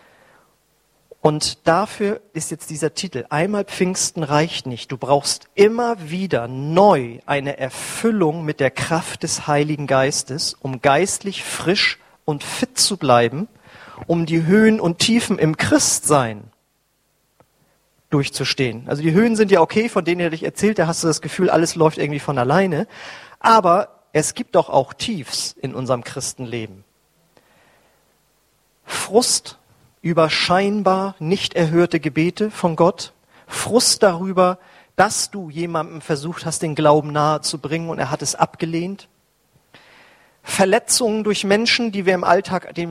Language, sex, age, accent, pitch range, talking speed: German, male, 40-59, German, 150-195 Hz, 135 wpm